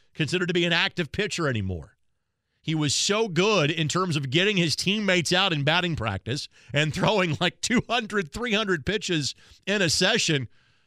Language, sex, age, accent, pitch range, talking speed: English, male, 40-59, American, 125-185 Hz, 165 wpm